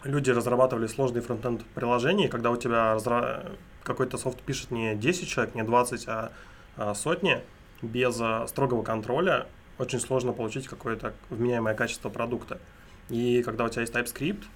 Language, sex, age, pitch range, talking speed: Russian, male, 20-39, 110-125 Hz, 140 wpm